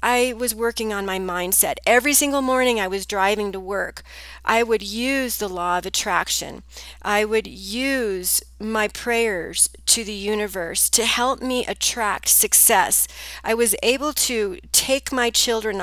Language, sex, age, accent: English, female, 40-59, American